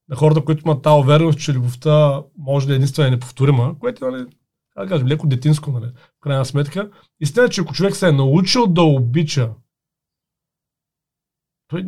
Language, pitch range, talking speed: Bulgarian, 140-170 Hz, 170 wpm